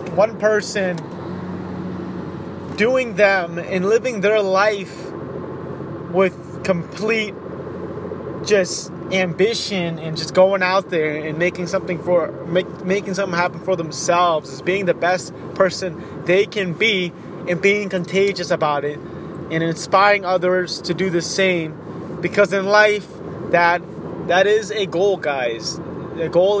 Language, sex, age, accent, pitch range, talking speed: English, male, 20-39, American, 165-195 Hz, 130 wpm